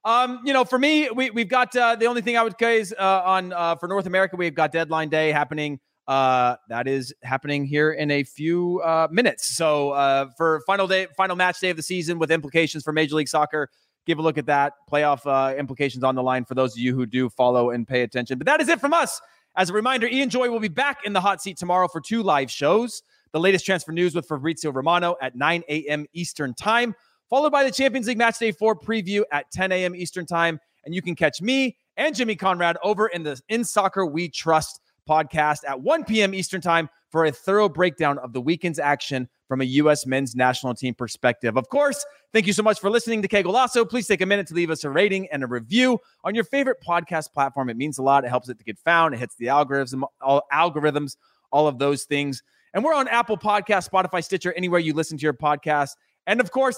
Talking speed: 235 wpm